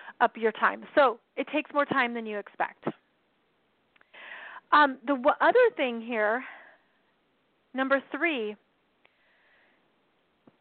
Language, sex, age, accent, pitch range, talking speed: English, female, 30-49, American, 235-295 Hz, 100 wpm